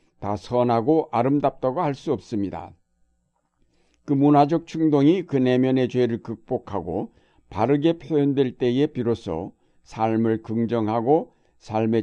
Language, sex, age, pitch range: Korean, male, 60-79, 110-140 Hz